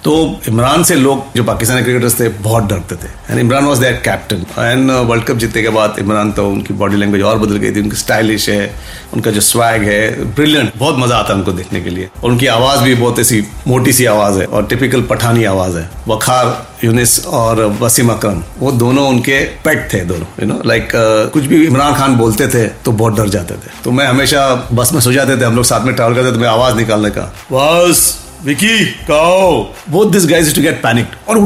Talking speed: 210 wpm